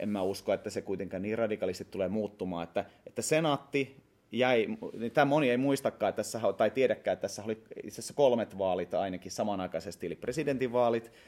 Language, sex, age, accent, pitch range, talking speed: Finnish, male, 30-49, native, 100-125 Hz, 170 wpm